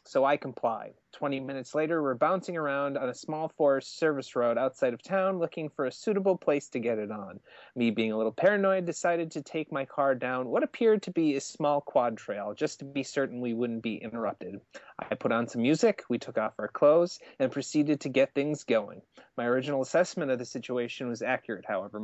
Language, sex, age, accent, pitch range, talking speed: English, male, 30-49, American, 125-160 Hz, 215 wpm